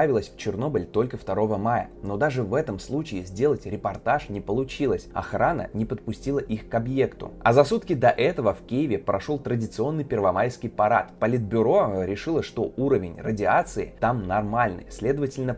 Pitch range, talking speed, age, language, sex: 105-140 Hz, 150 wpm, 20-39, Russian, male